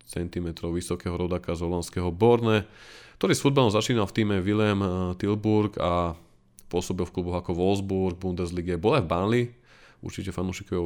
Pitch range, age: 90-110 Hz, 20-39